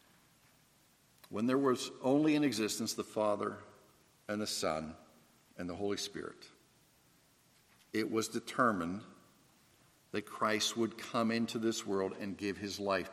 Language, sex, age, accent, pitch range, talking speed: English, male, 50-69, American, 110-140 Hz, 135 wpm